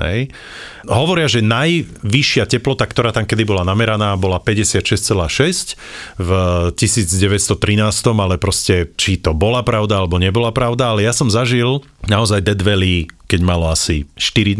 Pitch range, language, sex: 95-125 Hz, Slovak, male